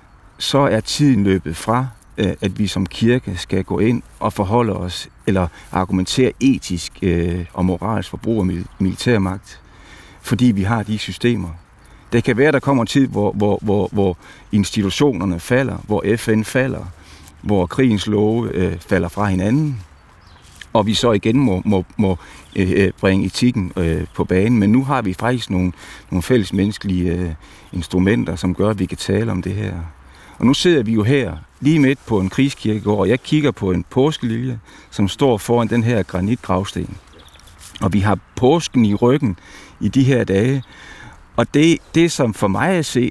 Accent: native